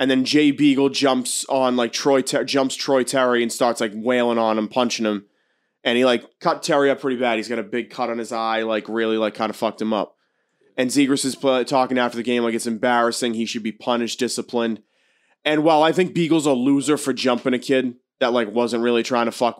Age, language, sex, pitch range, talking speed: 20-39, English, male, 115-140 Hz, 235 wpm